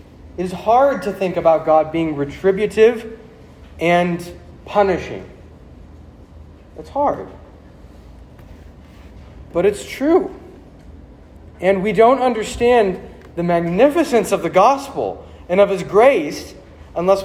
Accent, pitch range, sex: American, 125-210 Hz, male